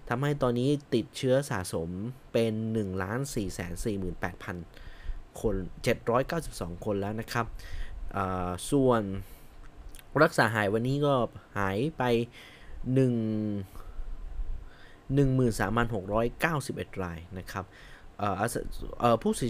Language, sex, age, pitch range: Thai, male, 20-39, 95-130 Hz